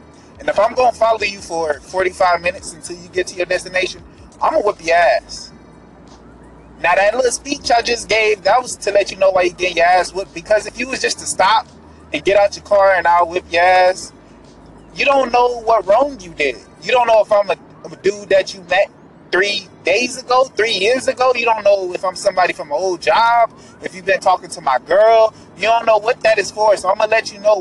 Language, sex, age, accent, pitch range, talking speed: English, male, 20-39, American, 185-255 Hz, 245 wpm